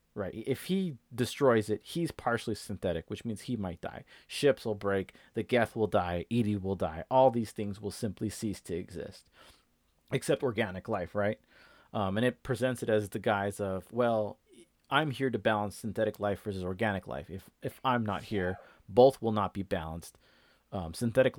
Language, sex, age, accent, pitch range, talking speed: English, male, 30-49, American, 95-125 Hz, 185 wpm